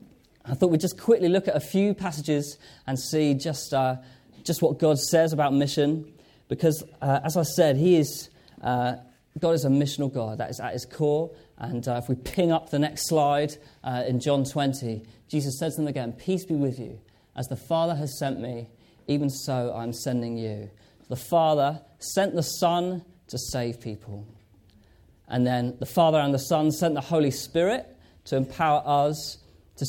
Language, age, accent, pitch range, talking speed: English, 30-49, British, 120-160 Hz, 190 wpm